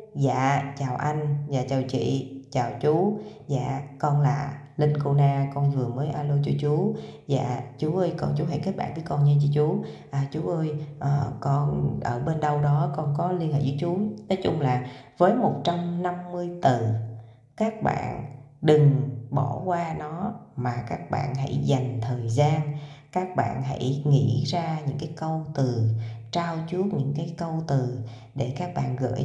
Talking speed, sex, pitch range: 175 wpm, female, 135-165 Hz